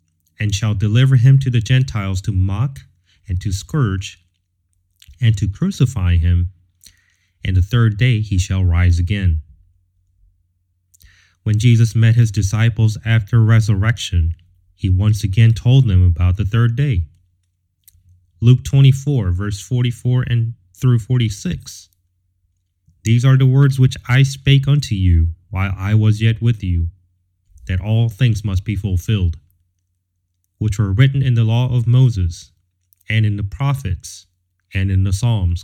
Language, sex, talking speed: English, male, 140 wpm